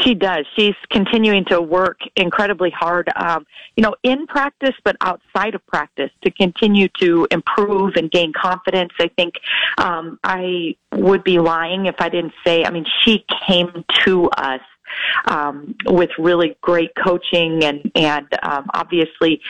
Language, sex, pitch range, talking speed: English, female, 155-185 Hz, 155 wpm